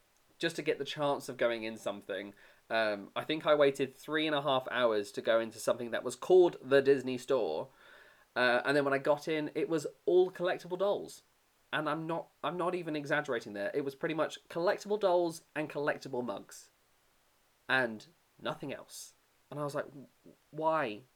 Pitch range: 120-155 Hz